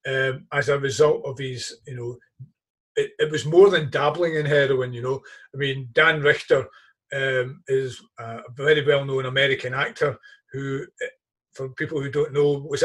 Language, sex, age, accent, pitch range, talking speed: English, male, 40-59, British, 140-185 Hz, 170 wpm